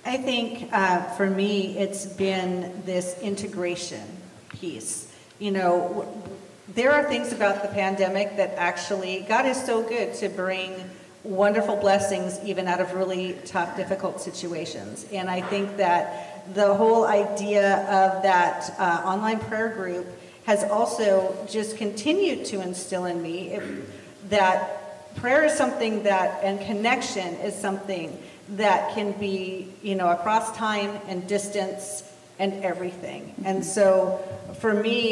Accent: American